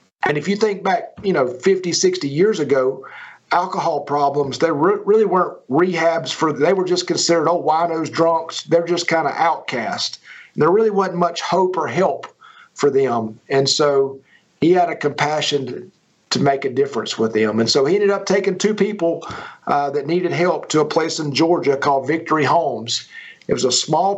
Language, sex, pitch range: English, male, 140-185 Hz